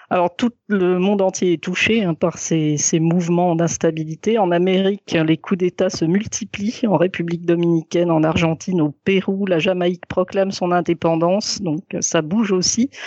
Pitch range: 165-195 Hz